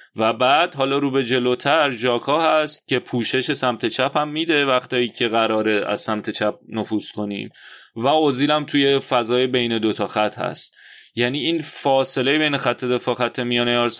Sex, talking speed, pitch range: male, 160 wpm, 115-130 Hz